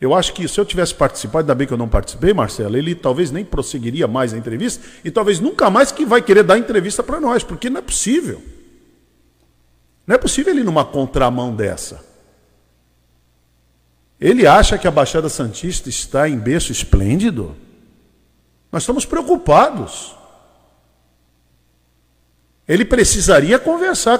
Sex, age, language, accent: male, 50-69, Portuguese, Brazilian